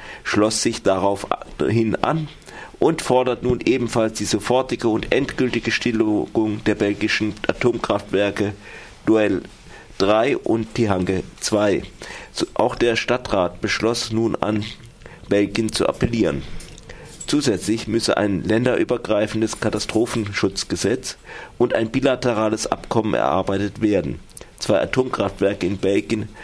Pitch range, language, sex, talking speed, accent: 95-115 Hz, German, male, 100 wpm, German